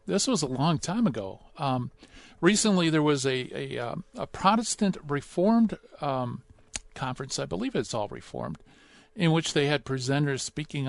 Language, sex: English, male